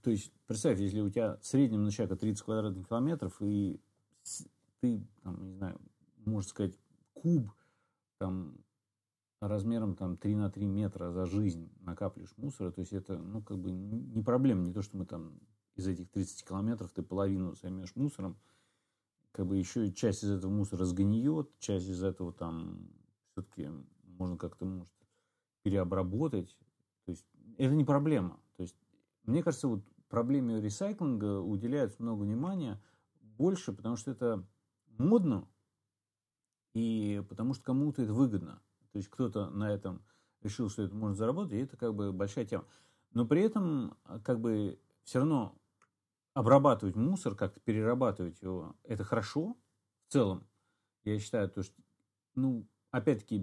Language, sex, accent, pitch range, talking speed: Russian, male, native, 95-120 Hz, 145 wpm